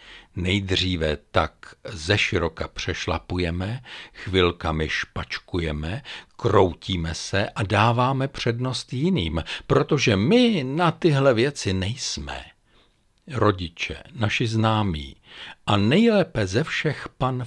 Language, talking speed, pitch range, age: Czech, 95 wpm, 85-130 Hz, 60-79